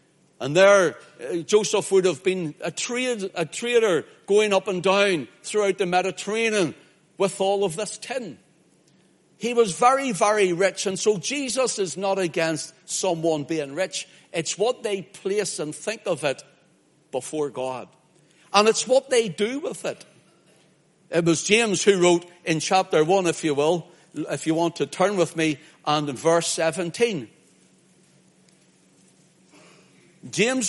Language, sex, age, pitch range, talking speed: English, male, 60-79, 165-210 Hz, 150 wpm